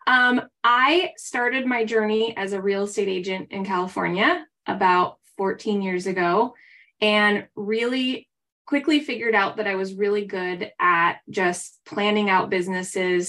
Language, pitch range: English, 185-230 Hz